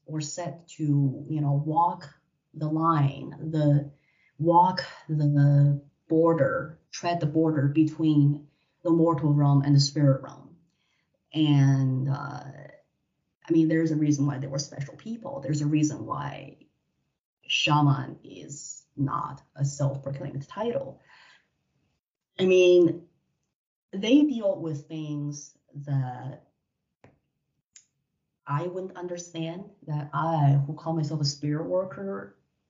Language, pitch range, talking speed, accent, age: English, 145-175 Hz, 115 wpm, American, 30-49